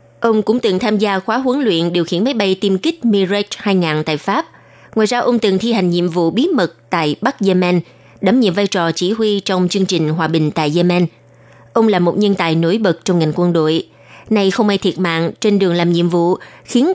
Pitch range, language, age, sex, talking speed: 170-220 Hz, Vietnamese, 20-39, female, 235 wpm